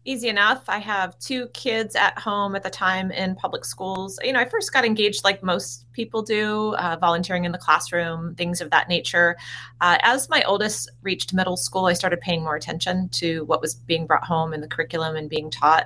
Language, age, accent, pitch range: English, 30-49, American, 155-205 Hz